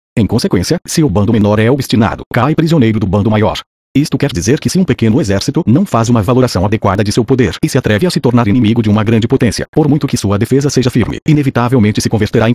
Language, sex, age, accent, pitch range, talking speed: Portuguese, male, 40-59, Brazilian, 110-140 Hz, 245 wpm